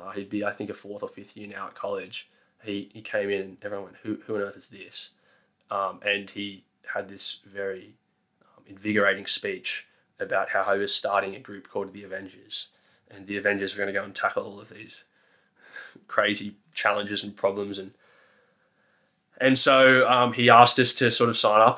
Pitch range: 100-110 Hz